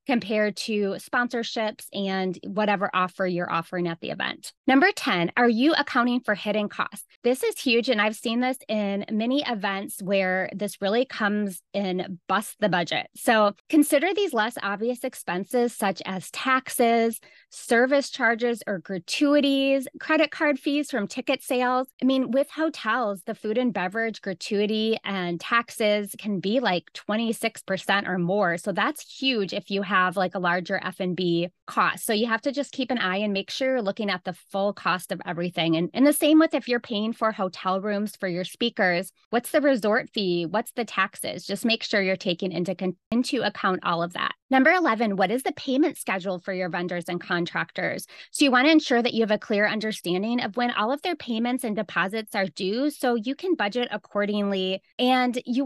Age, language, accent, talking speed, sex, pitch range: 20-39, English, American, 190 wpm, female, 190-250 Hz